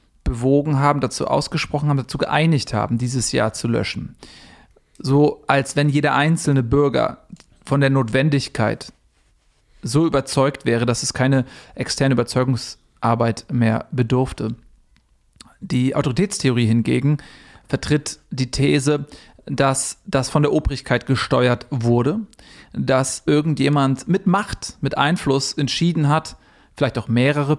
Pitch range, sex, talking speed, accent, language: 125-150 Hz, male, 120 wpm, German, German